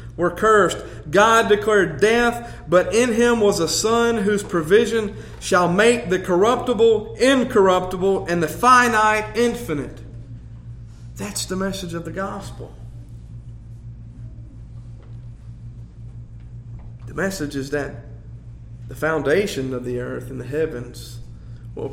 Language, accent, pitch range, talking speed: English, American, 115-170 Hz, 110 wpm